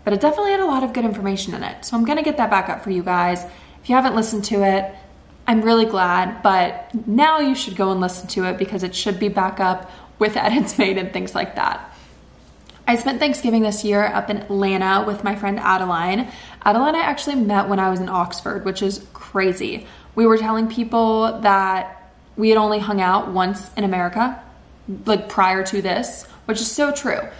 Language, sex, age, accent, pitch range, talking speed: English, female, 20-39, American, 195-235 Hz, 210 wpm